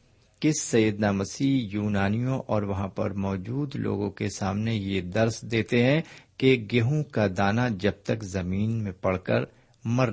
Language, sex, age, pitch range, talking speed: Urdu, male, 50-69, 100-135 Hz, 155 wpm